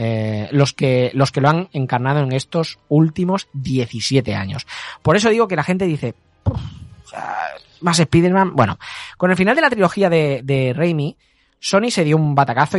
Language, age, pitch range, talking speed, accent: Spanish, 20-39, 125-170 Hz, 175 wpm, Spanish